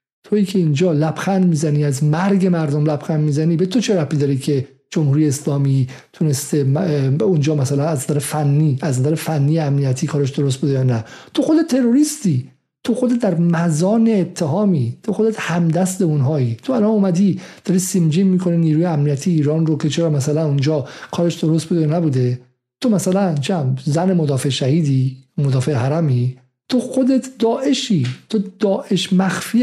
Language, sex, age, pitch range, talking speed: Persian, male, 50-69, 135-180 Hz, 160 wpm